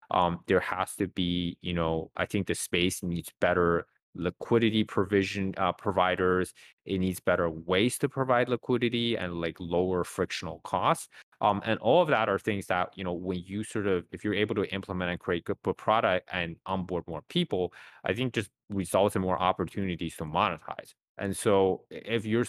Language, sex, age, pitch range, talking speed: English, male, 20-39, 85-100 Hz, 185 wpm